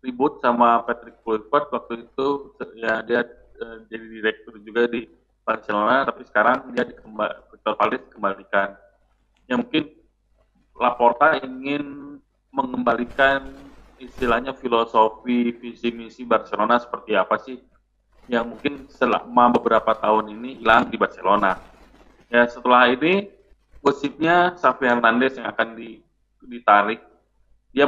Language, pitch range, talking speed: Indonesian, 110-125 Hz, 110 wpm